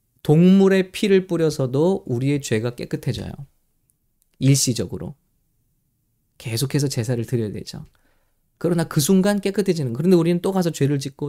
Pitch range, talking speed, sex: 125-160 Hz, 110 wpm, male